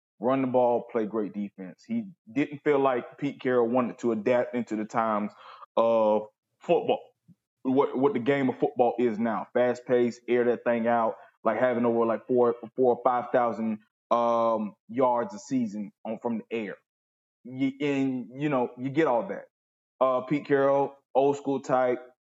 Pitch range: 120-155 Hz